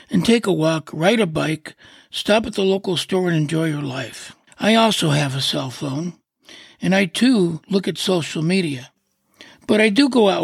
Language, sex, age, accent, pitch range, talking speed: English, male, 60-79, American, 150-205 Hz, 195 wpm